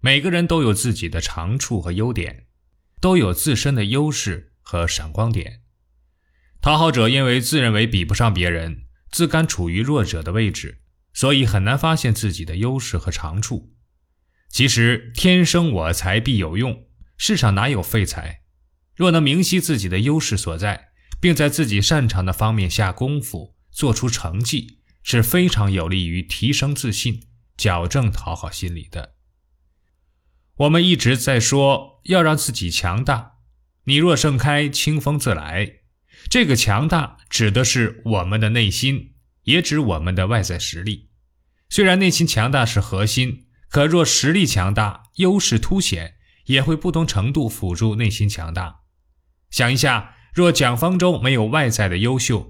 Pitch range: 90-140 Hz